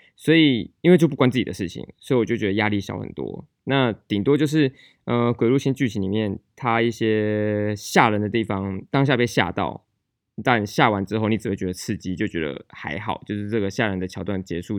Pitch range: 100-130 Hz